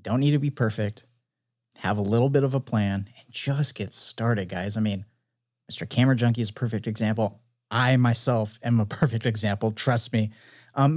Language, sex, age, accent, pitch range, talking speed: English, male, 30-49, American, 115-150 Hz, 190 wpm